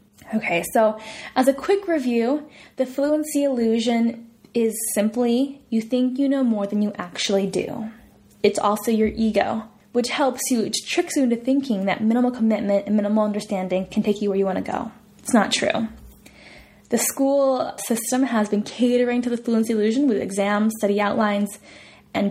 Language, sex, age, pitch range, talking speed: Italian, female, 10-29, 210-260 Hz, 170 wpm